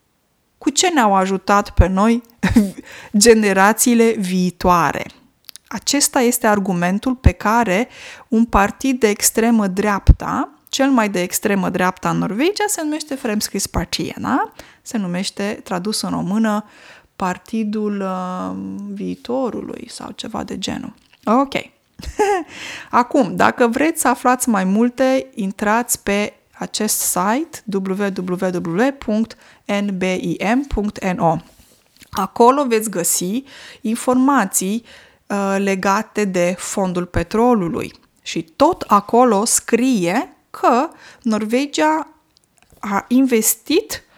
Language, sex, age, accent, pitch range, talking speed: Romanian, female, 20-39, native, 195-255 Hz, 90 wpm